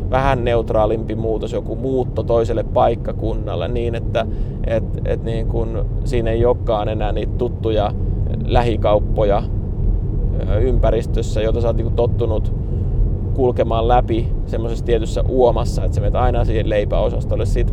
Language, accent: Finnish, native